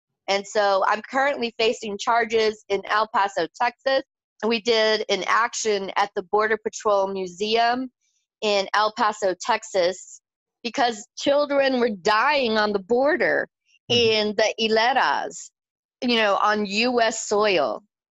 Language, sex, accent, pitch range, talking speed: English, female, American, 195-235 Hz, 125 wpm